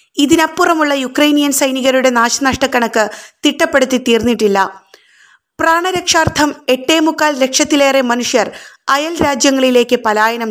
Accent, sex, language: native, female, Malayalam